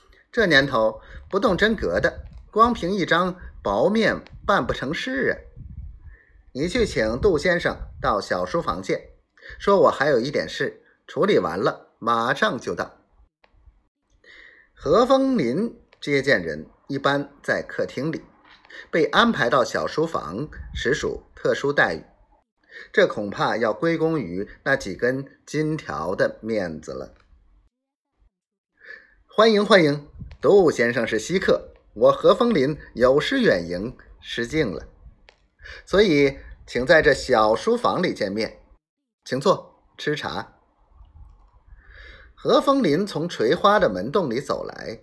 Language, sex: Chinese, male